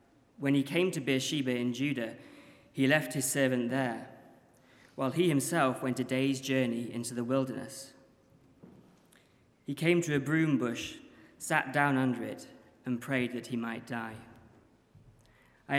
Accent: British